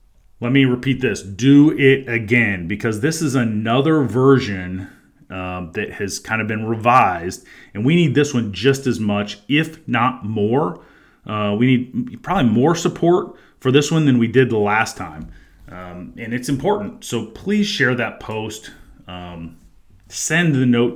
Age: 30-49